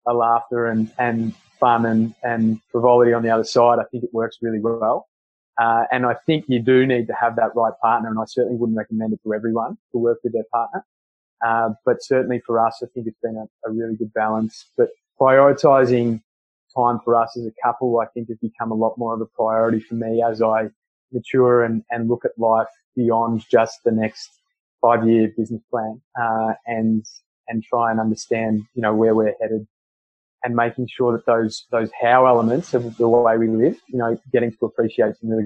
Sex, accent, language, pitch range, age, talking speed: male, Australian, English, 110-120 Hz, 20-39, 210 wpm